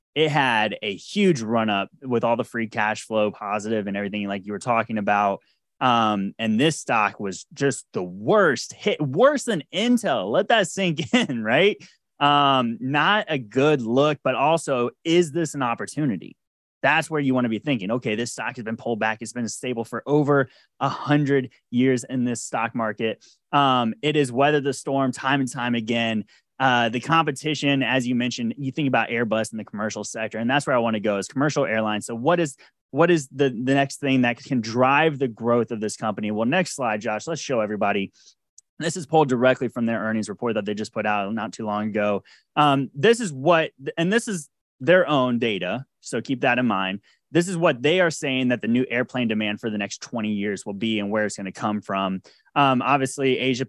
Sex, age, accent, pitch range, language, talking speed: male, 20-39, American, 110-145 Hz, English, 215 wpm